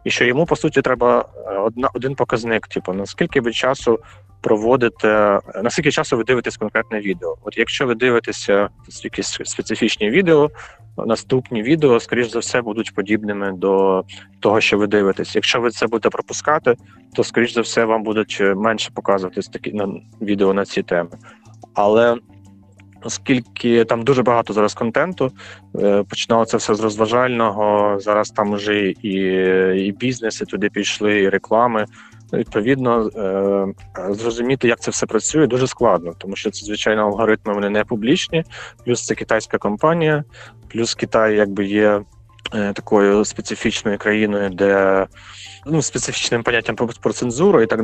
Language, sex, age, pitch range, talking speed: Ukrainian, male, 20-39, 100-120 Hz, 150 wpm